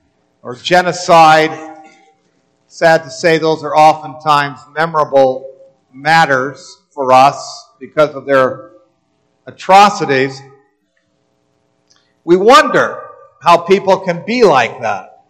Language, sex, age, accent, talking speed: English, male, 50-69, American, 95 wpm